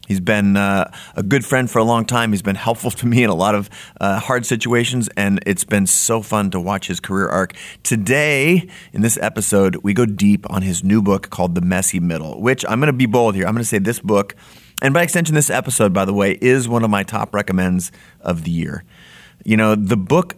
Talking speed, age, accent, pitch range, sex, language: 240 wpm, 30-49, American, 100-130 Hz, male, English